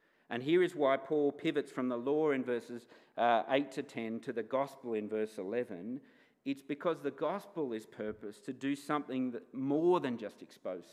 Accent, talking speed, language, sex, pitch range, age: Australian, 190 wpm, English, male, 115-145 Hz, 40-59